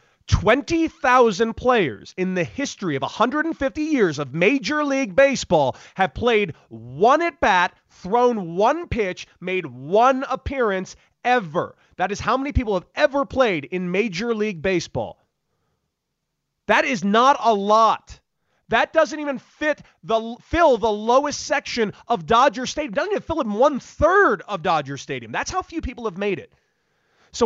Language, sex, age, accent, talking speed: English, male, 30-49, American, 150 wpm